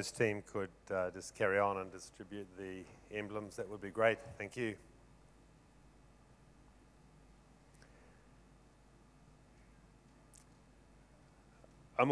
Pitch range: 115-145 Hz